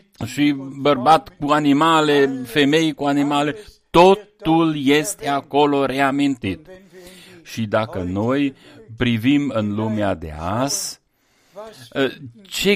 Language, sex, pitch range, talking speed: Romanian, male, 110-140 Hz, 95 wpm